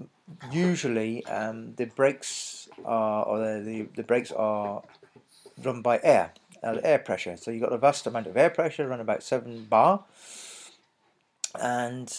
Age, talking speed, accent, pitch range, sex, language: 40-59, 155 wpm, British, 110-125 Hz, male, English